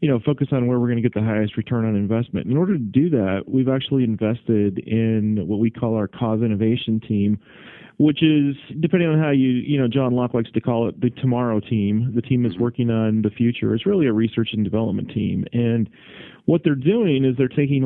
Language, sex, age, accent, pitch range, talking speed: English, male, 30-49, American, 110-130 Hz, 230 wpm